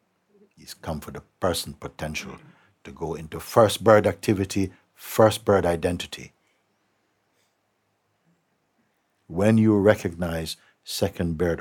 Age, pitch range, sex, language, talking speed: 60-79, 80-105 Hz, male, English, 105 wpm